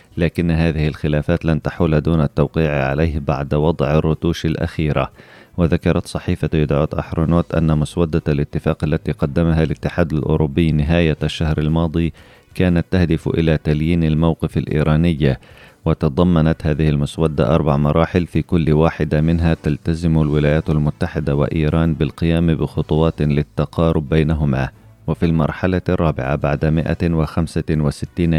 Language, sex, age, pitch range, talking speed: Arabic, male, 30-49, 75-85 Hz, 115 wpm